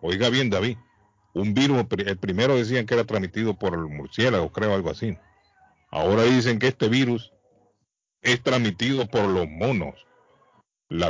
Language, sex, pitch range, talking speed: Spanish, male, 100-120 Hz, 150 wpm